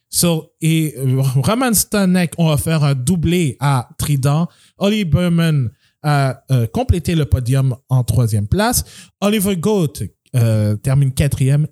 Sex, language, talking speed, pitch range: male, French, 135 wpm, 130-180 Hz